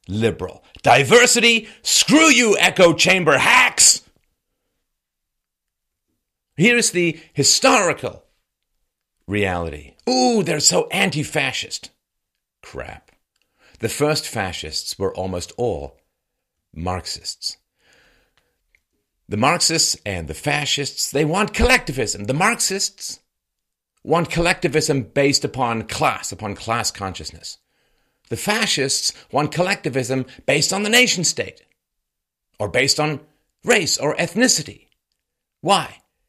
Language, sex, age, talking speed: English, male, 50-69, 95 wpm